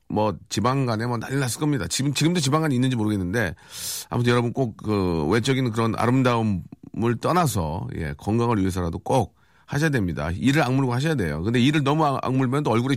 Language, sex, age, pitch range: Korean, male, 40-59, 105-145 Hz